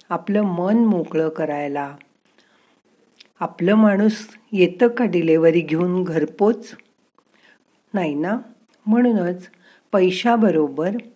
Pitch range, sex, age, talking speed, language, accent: 165-225 Hz, female, 50-69, 80 wpm, Marathi, native